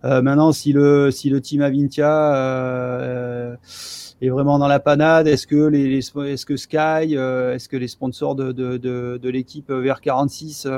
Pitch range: 130-145 Hz